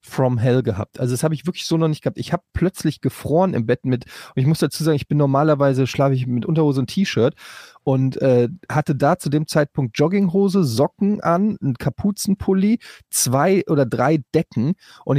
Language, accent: German, German